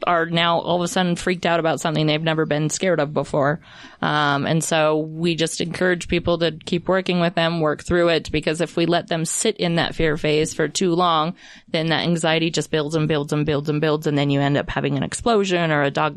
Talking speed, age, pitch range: 245 wpm, 20-39, 160-185 Hz